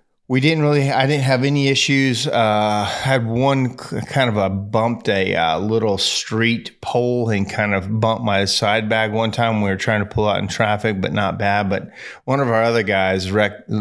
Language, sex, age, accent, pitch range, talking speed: English, male, 30-49, American, 95-115 Hz, 210 wpm